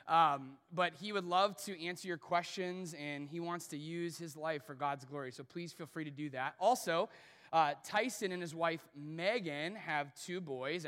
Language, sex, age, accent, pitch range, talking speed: English, male, 30-49, American, 155-190 Hz, 200 wpm